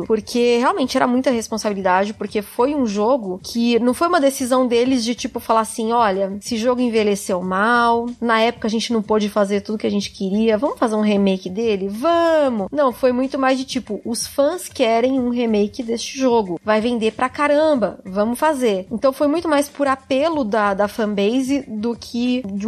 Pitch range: 210-265 Hz